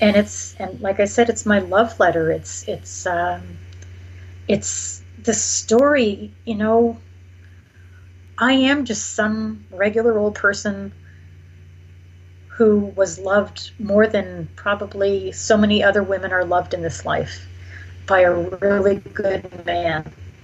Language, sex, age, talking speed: English, female, 40-59, 130 wpm